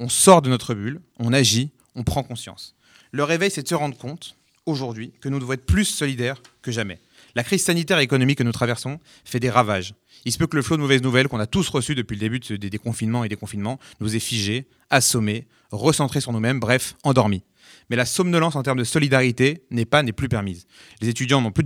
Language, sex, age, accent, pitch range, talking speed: French, male, 30-49, French, 115-140 Hz, 230 wpm